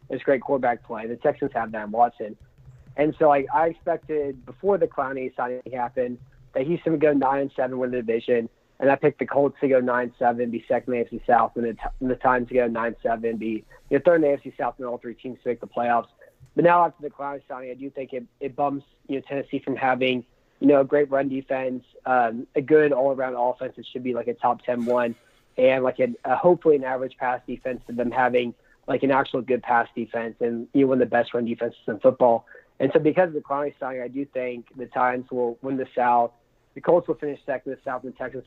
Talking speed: 250 wpm